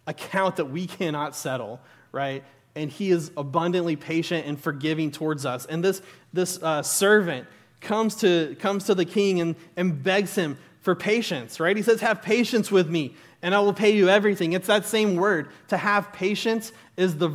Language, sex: English, male